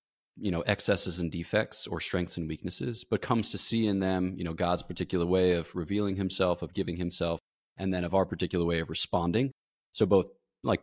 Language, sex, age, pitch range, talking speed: English, male, 20-39, 90-110 Hz, 205 wpm